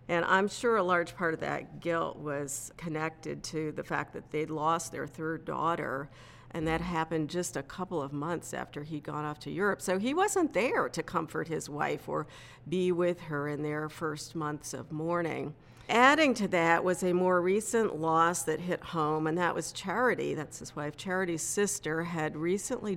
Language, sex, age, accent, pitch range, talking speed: English, female, 50-69, American, 150-180 Hz, 195 wpm